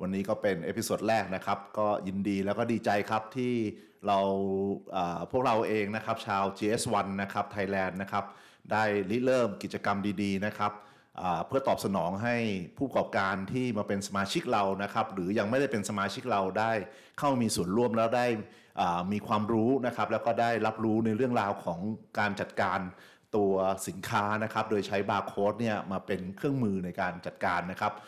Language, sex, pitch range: English, male, 95-110 Hz